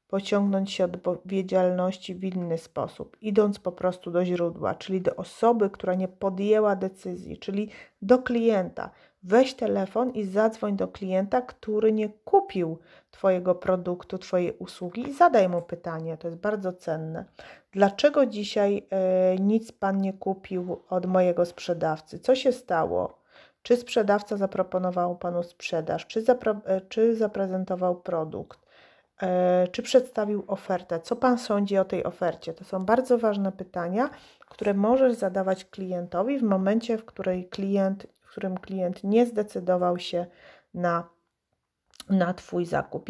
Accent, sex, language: native, female, Polish